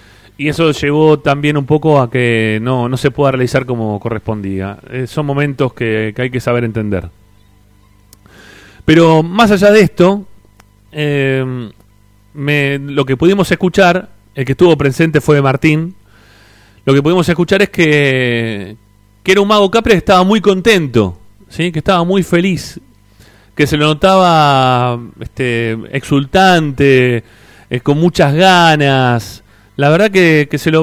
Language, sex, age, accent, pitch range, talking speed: Spanish, male, 30-49, Argentinian, 115-165 Hz, 150 wpm